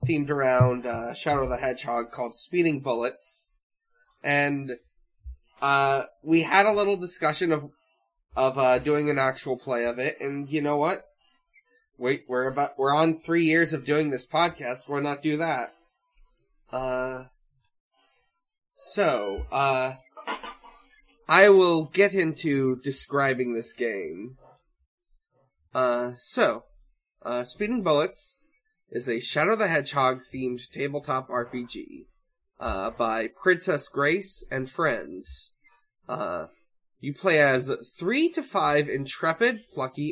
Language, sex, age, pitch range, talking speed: English, male, 20-39, 130-185 Hz, 125 wpm